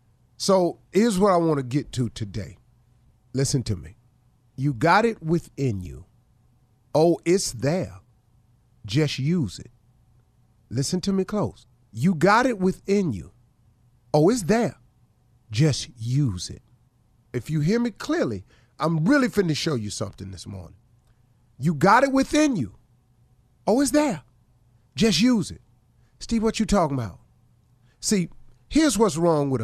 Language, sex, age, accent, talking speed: English, male, 50-69, American, 145 wpm